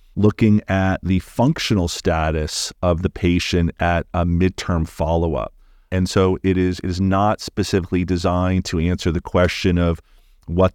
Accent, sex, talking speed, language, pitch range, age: American, male, 150 wpm, English, 85-95 Hz, 40-59